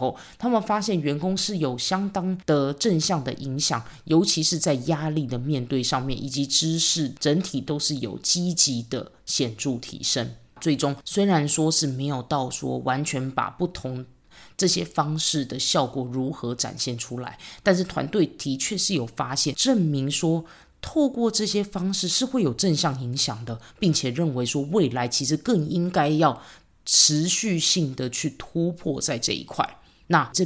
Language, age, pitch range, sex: Chinese, 20-39, 130-170 Hz, female